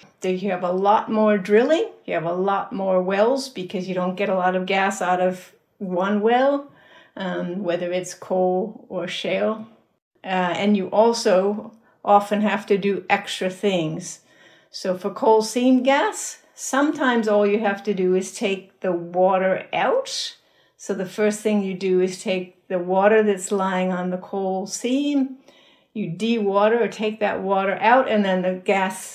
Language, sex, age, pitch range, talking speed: English, female, 60-79, 185-215 Hz, 170 wpm